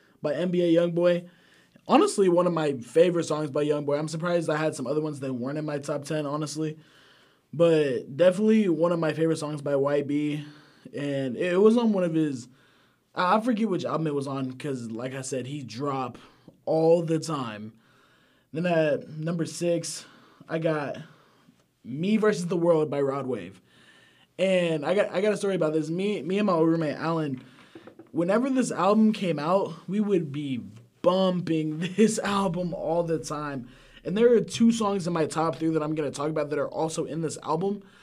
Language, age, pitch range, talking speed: English, 20-39, 140-175 Hz, 190 wpm